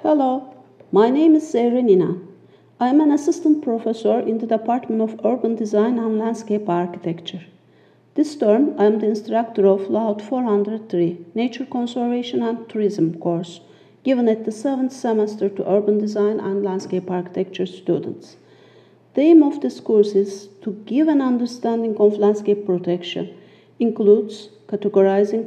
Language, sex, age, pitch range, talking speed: Turkish, female, 50-69, 205-250 Hz, 145 wpm